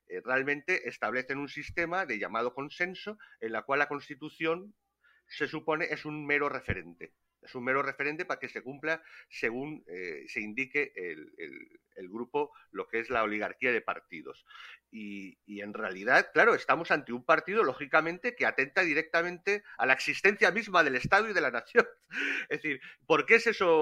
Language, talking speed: Spanish, 175 wpm